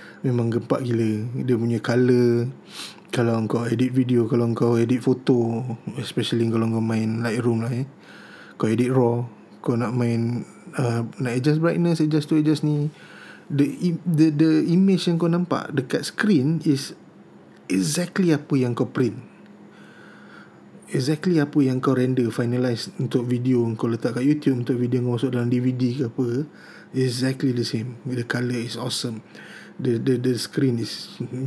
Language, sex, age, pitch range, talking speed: Malay, male, 20-39, 120-140 Hz, 155 wpm